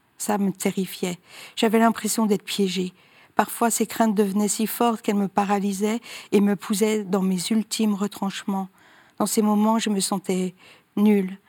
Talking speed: 155 wpm